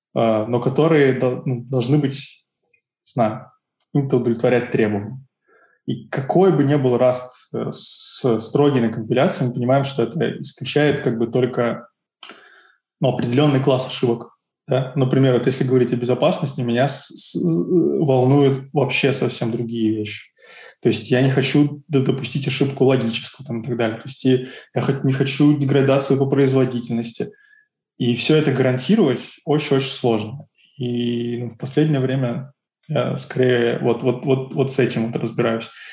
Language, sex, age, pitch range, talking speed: Russian, male, 20-39, 120-140 Hz, 135 wpm